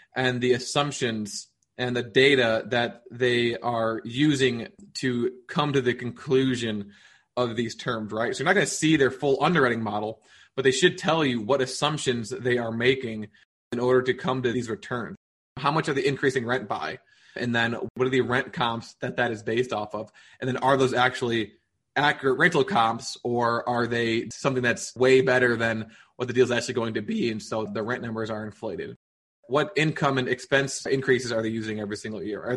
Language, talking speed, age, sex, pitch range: English, 200 wpm, 20-39, male, 115-135 Hz